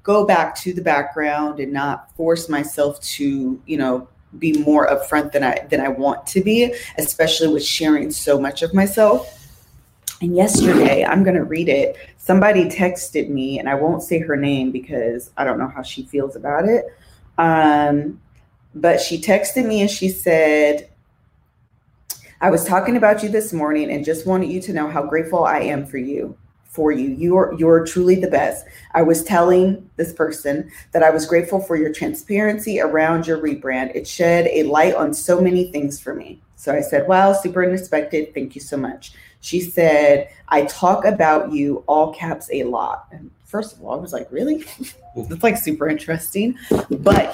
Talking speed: 190 wpm